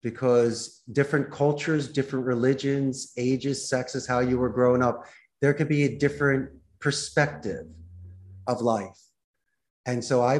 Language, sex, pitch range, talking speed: English, male, 115-135 Hz, 135 wpm